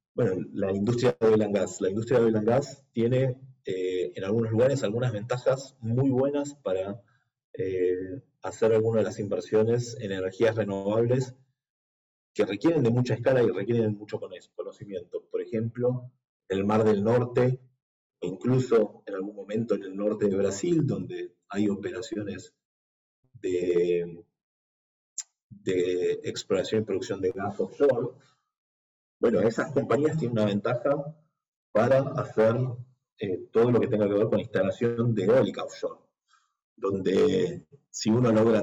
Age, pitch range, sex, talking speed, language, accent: 40-59, 100-130 Hz, male, 135 wpm, Spanish, Argentinian